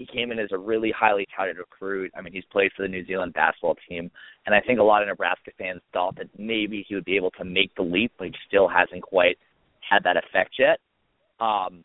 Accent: American